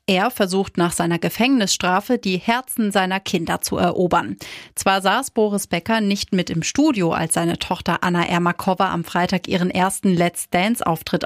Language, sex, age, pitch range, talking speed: German, female, 30-49, 180-225 Hz, 160 wpm